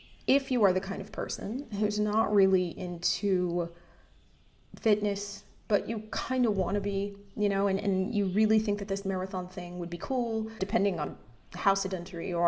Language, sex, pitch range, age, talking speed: English, female, 180-210 Hz, 20-39, 185 wpm